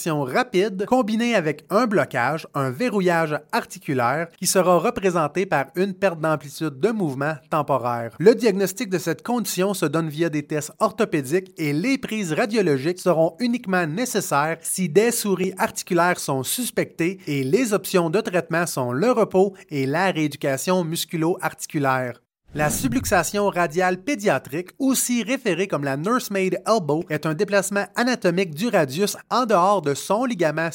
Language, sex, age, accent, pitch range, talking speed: French, male, 30-49, Canadian, 155-205 Hz, 145 wpm